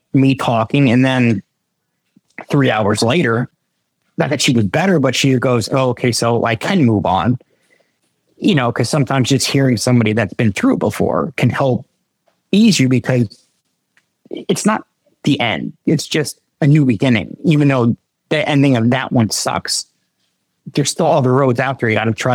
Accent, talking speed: American, 170 wpm